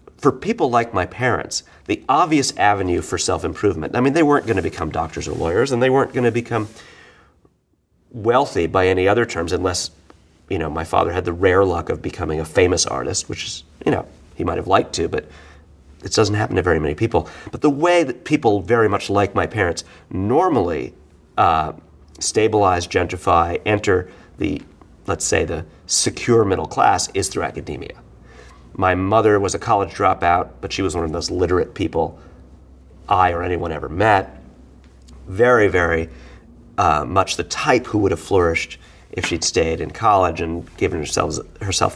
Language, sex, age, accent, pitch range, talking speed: English, male, 40-59, American, 80-110 Hz, 180 wpm